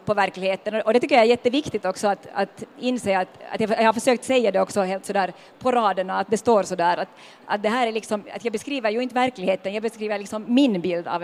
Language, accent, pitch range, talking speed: Swedish, native, 195-245 Hz, 245 wpm